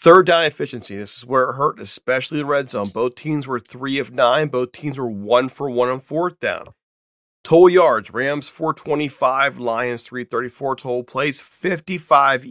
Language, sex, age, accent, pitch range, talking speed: English, male, 40-59, American, 105-135 Hz, 175 wpm